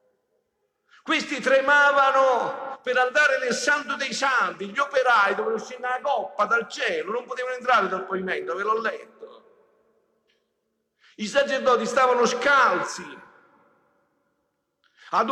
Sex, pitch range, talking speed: male, 235-310 Hz, 115 wpm